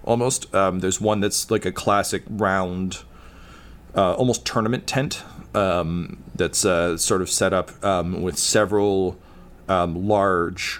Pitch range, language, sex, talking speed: 85-100 Hz, English, male, 140 wpm